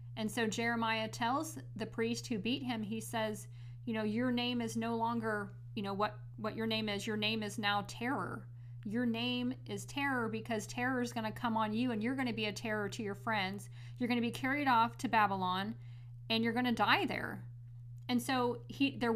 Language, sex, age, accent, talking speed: English, female, 40-59, American, 220 wpm